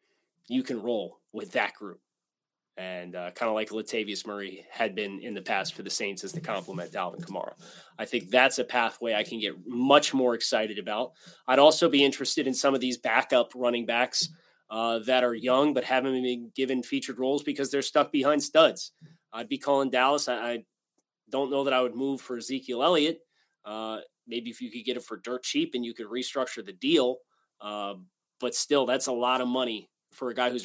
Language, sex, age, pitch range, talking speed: English, male, 20-39, 120-150 Hz, 210 wpm